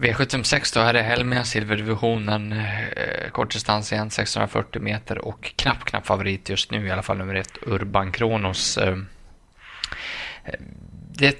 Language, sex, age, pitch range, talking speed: Swedish, male, 20-39, 95-110 Hz, 135 wpm